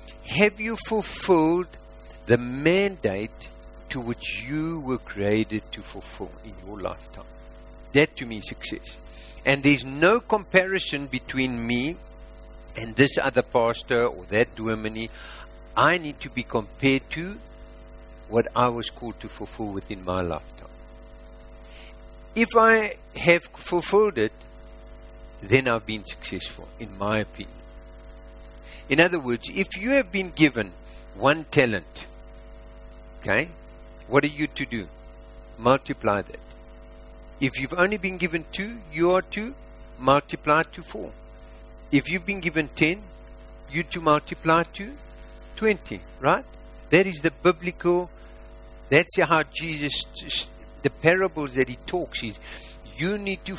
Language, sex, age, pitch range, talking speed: English, male, 50-69, 110-165 Hz, 135 wpm